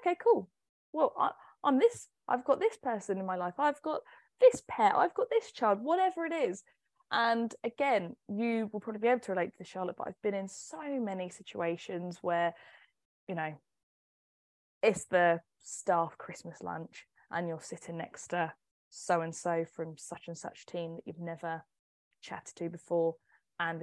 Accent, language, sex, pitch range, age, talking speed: British, English, female, 170-230 Hz, 10-29, 165 wpm